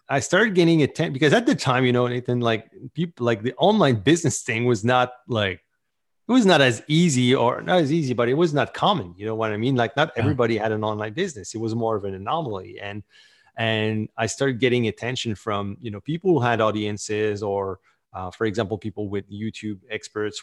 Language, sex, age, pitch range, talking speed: English, male, 30-49, 105-135 Hz, 215 wpm